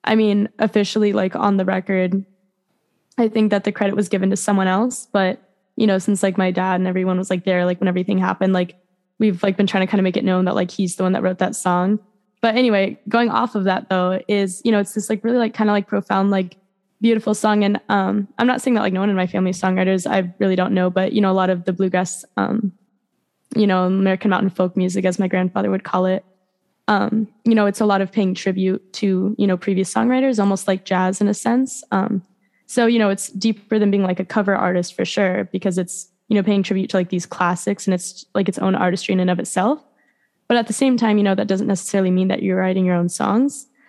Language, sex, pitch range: English, female, 185-215 Hz